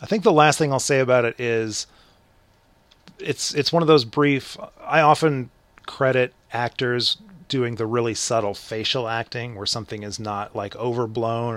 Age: 30-49